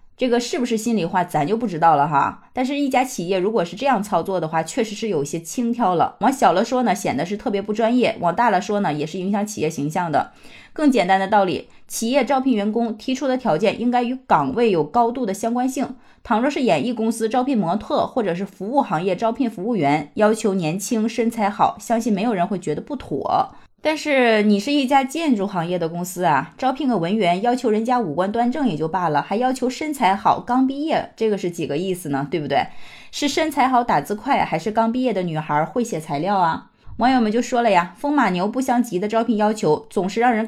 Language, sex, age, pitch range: Chinese, female, 20-39, 180-245 Hz